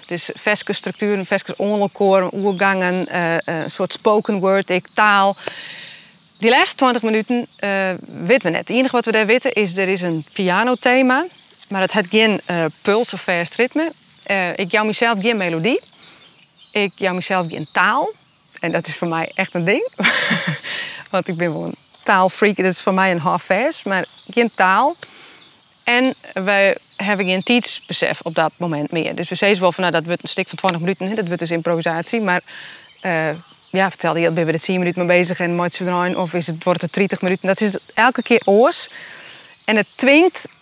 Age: 30-49